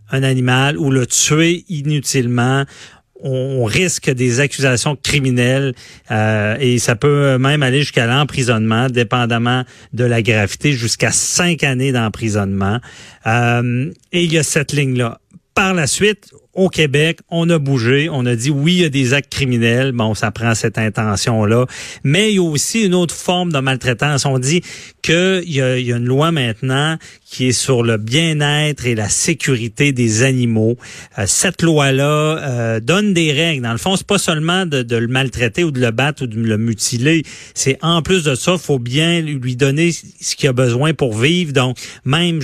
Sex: male